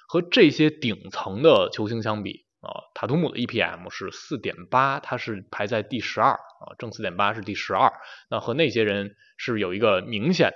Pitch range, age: 105-170 Hz, 20-39